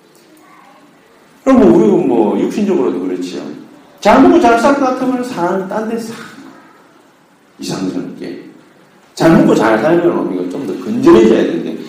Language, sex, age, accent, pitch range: Korean, male, 40-59, native, 175-280 Hz